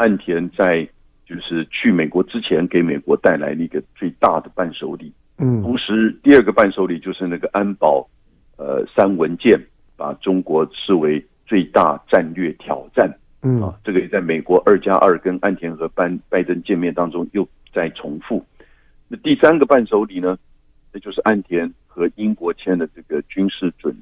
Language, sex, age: Chinese, male, 60-79